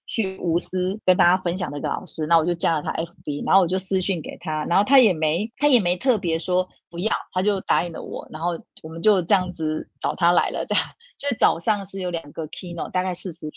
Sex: female